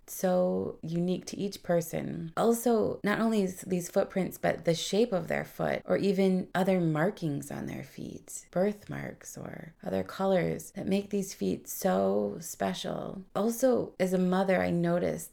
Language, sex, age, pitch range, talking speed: English, female, 20-39, 165-195 Hz, 155 wpm